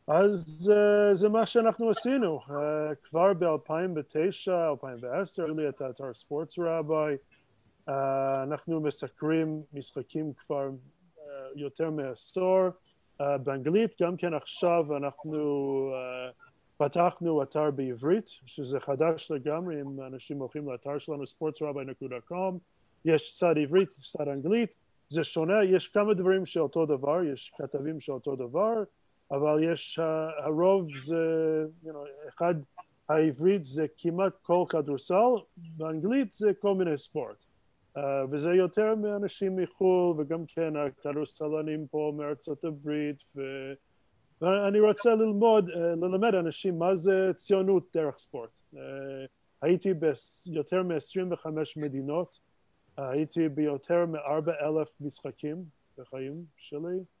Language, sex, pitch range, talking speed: Hebrew, male, 145-180 Hz, 120 wpm